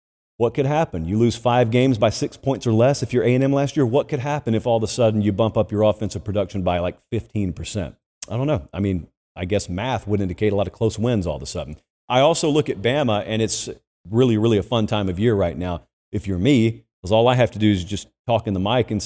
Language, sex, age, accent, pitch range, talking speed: English, male, 40-59, American, 100-130 Hz, 275 wpm